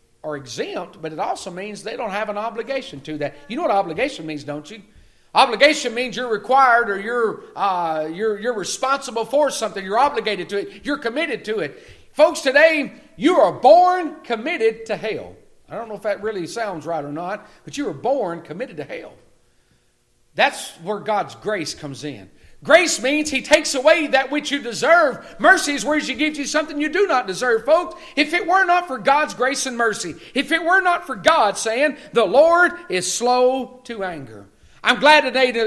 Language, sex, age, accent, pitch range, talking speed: English, male, 50-69, American, 195-290 Hz, 200 wpm